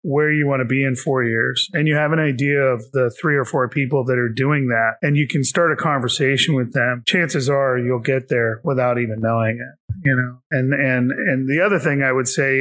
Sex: male